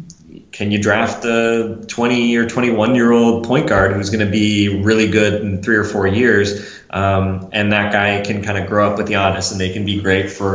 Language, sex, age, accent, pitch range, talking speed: English, male, 20-39, American, 95-110 Hz, 230 wpm